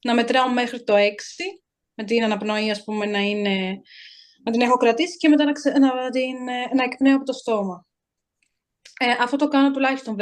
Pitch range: 220-280 Hz